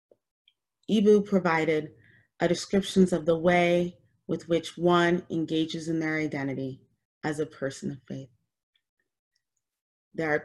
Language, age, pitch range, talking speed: English, 30-49, 135-170 Hz, 120 wpm